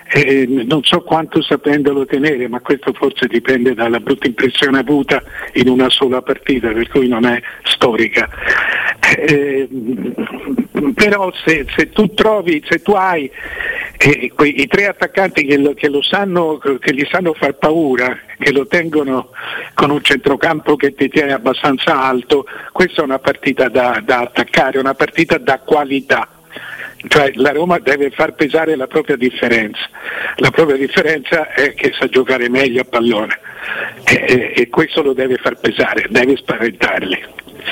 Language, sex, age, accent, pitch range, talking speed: Italian, male, 50-69, native, 130-175 Hz, 155 wpm